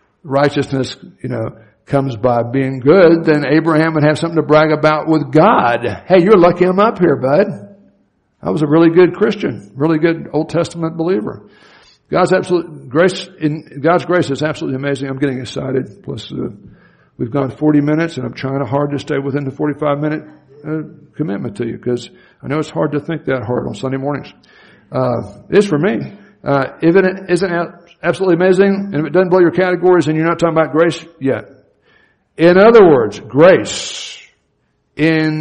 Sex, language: male, English